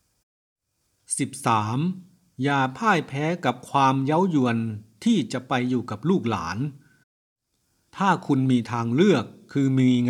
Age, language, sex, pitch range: 60-79, Thai, male, 115-140 Hz